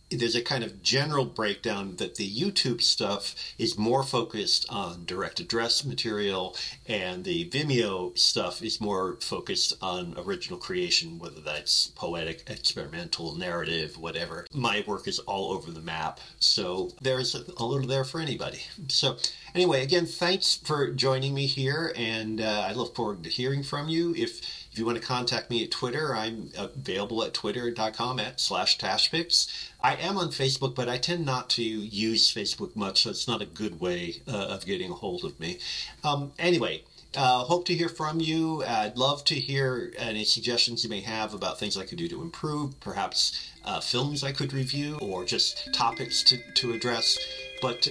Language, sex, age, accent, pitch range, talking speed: English, male, 40-59, American, 115-160 Hz, 180 wpm